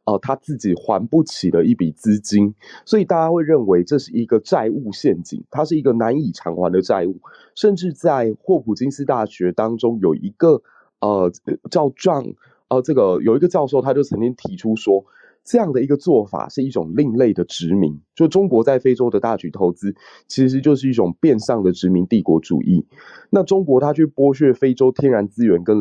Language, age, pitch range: Chinese, 20-39, 100-150 Hz